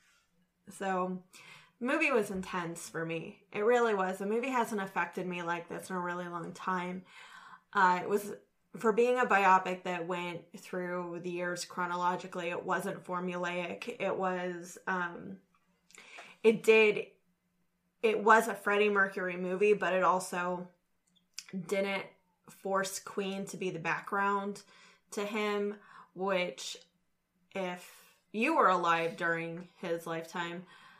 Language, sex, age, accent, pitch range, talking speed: English, female, 20-39, American, 170-205 Hz, 135 wpm